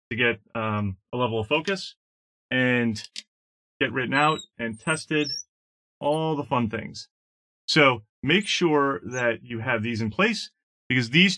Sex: male